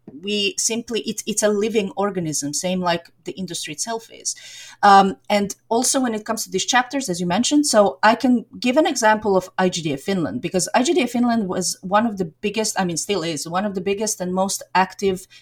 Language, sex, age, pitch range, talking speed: Danish, female, 30-49, 180-215 Hz, 205 wpm